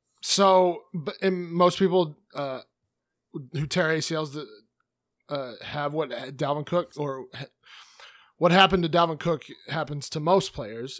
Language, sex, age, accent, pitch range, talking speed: English, male, 30-49, American, 135-170 Hz, 120 wpm